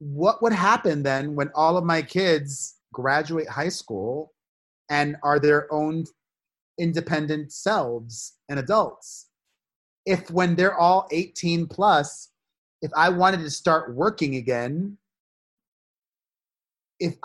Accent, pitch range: American, 145-190 Hz